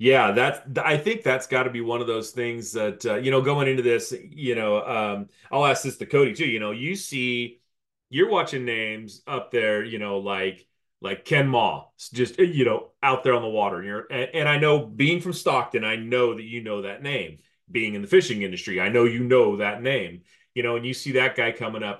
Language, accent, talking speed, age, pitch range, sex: English, American, 235 wpm, 30-49, 105-140 Hz, male